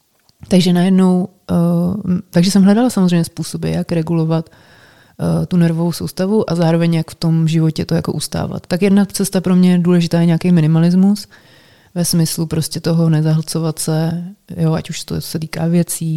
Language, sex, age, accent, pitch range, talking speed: Czech, female, 30-49, native, 160-175 Hz, 170 wpm